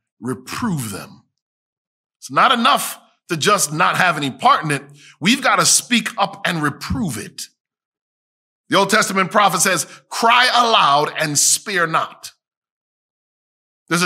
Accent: American